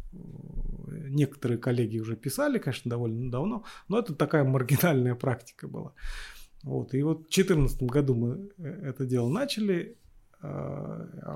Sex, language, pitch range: male, Russian, 120-155 Hz